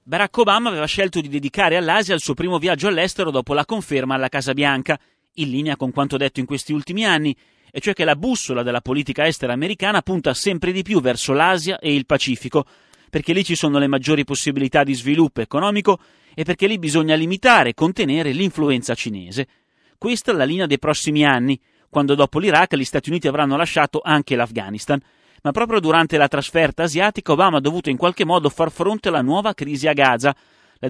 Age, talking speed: 30-49, 195 wpm